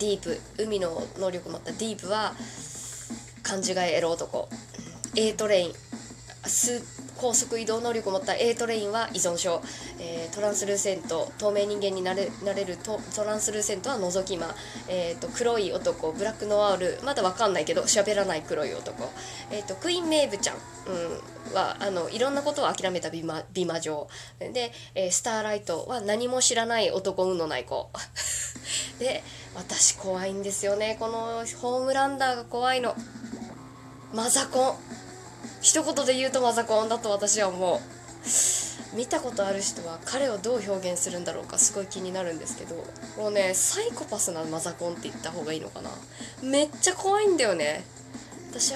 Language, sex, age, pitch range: Japanese, female, 20-39, 190-250 Hz